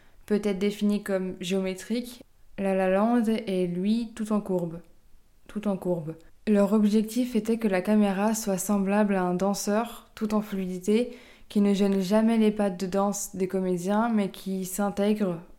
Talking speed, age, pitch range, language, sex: 160 wpm, 20-39, 190-220 Hz, French, female